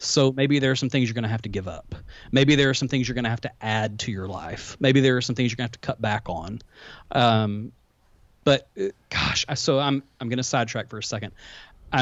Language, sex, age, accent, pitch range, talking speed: English, male, 40-59, American, 110-140 Hz, 270 wpm